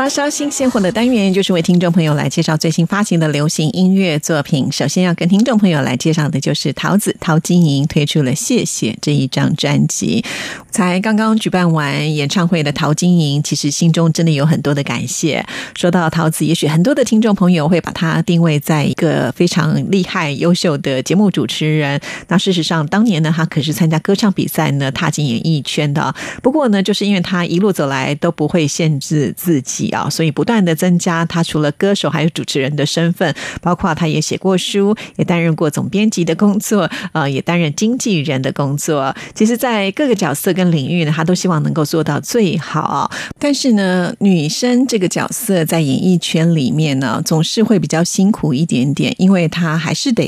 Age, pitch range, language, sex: 30-49, 155-195 Hz, Chinese, female